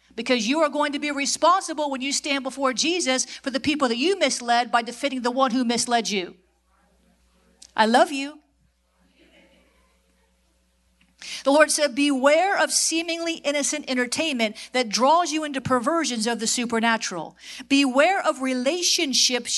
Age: 50-69